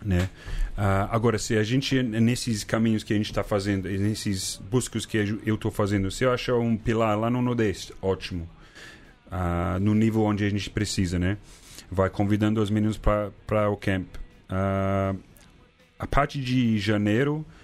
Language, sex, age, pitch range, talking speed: Portuguese, male, 30-49, 95-120 Hz, 165 wpm